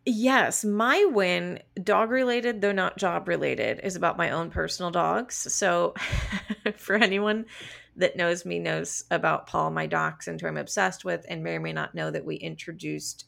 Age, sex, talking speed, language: 30-49, female, 180 wpm, English